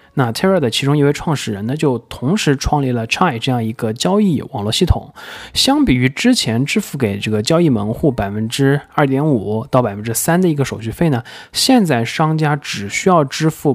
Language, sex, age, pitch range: Chinese, male, 20-39, 115-160 Hz